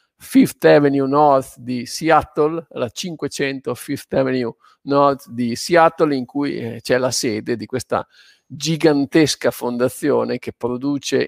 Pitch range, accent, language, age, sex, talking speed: 130-160 Hz, native, Italian, 50-69, male, 130 wpm